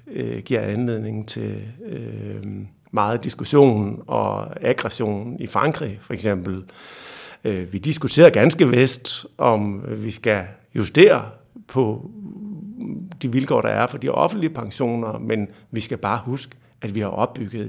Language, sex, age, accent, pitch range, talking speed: Danish, male, 60-79, native, 100-120 Hz, 125 wpm